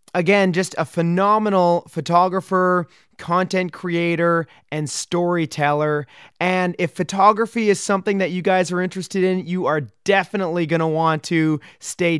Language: English